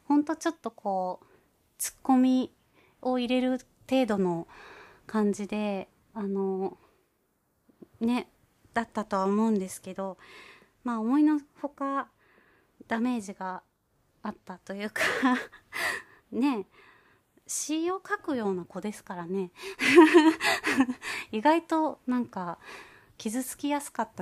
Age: 30-49